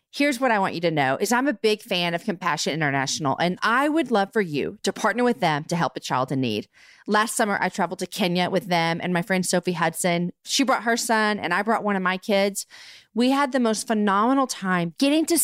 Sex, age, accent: female, 40-59, American